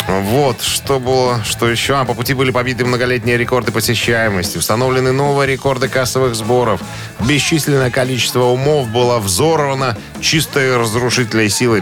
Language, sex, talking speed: Russian, male, 130 wpm